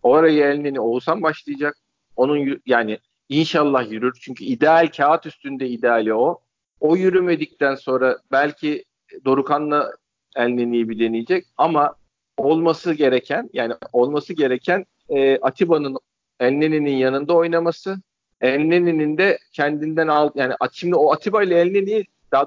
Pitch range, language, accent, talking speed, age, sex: 135-175 Hz, Turkish, native, 125 wpm, 50-69, male